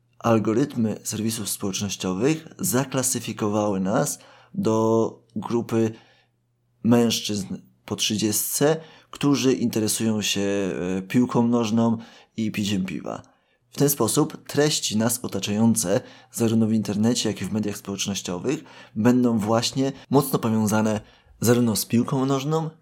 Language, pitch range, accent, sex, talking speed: Polish, 100-120 Hz, native, male, 105 wpm